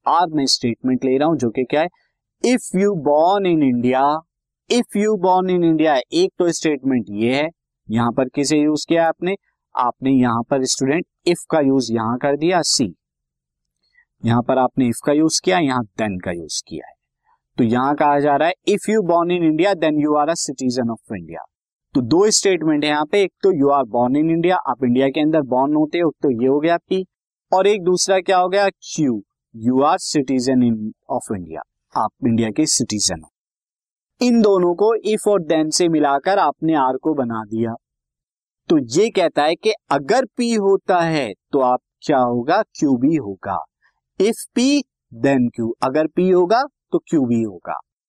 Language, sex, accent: Hindi, male, native